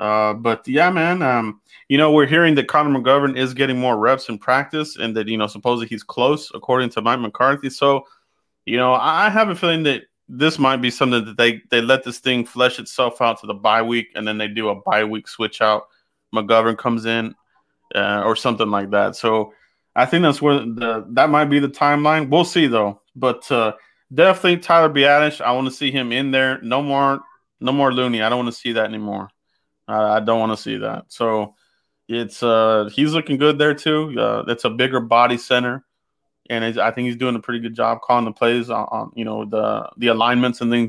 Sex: male